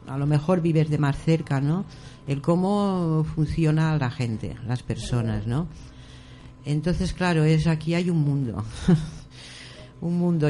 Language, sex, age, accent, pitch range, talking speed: Spanish, female, 50-69, Spanish, 135-165 Hz, 145 wpm